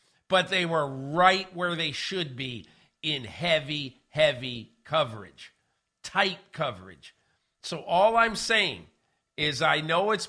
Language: English